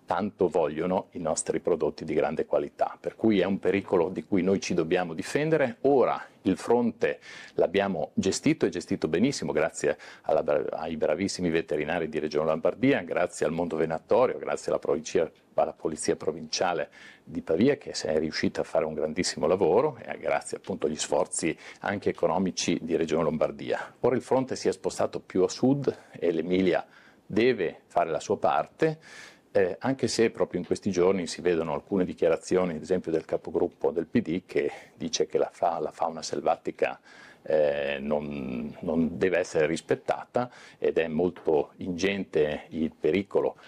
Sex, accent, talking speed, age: male, native, 160 wpm, 50-69